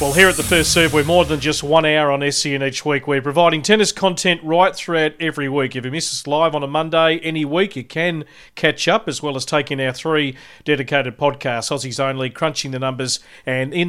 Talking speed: 230 wpm